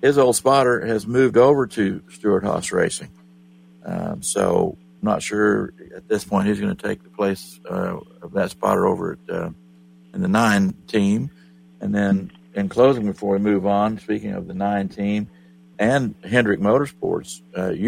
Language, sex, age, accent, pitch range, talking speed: English, male, 50-69, American, 75-105 Hz, 175 wpm